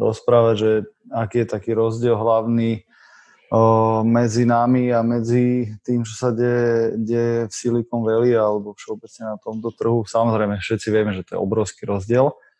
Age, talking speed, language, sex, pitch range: 20-39, 150 wpm, Slovak, male, 105-115 Hz